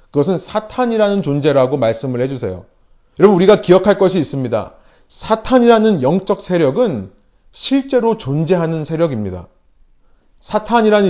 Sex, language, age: male, Korean, 30-49